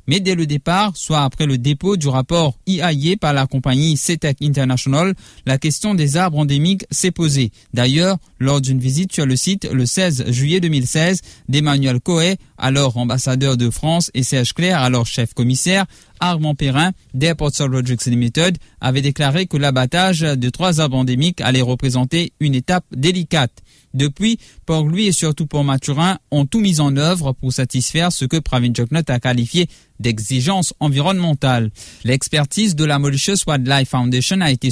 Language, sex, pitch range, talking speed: English, male, 130-170 Hz, 165 wpm